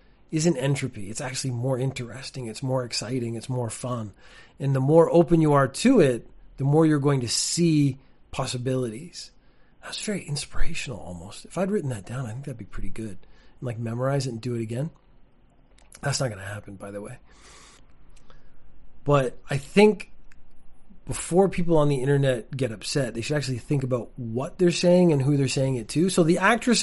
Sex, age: male, 30-49